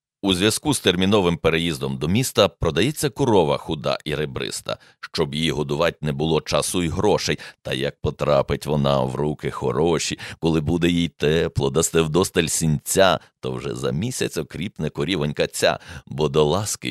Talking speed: 160 wpm